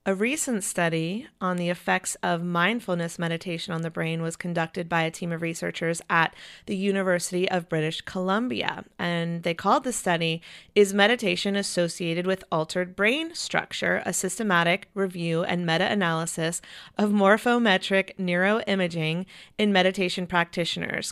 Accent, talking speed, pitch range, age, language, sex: American, 135 wpm, 175-225 Hz, 30-49, English, female